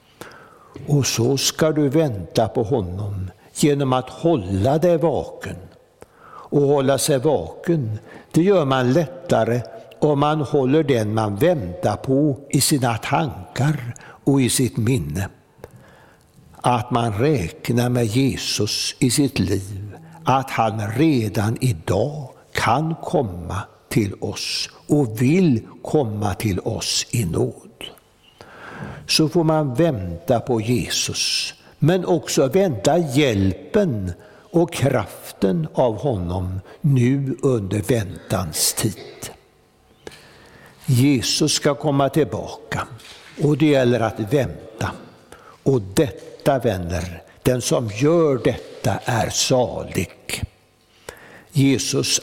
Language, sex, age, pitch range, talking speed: Swedish, male, 60-79, 110-150 Hz, 110 wpm